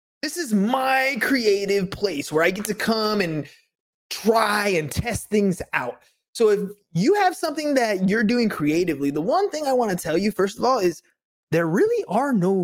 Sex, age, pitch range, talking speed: male, 20-39, 170-235 Hz, 195 wpm